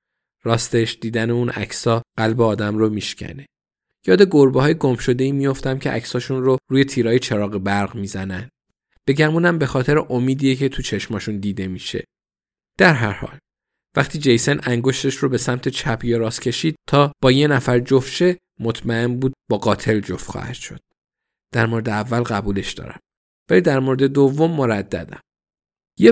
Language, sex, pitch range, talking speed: Persian, male, 110-140 Hz, 145 wpm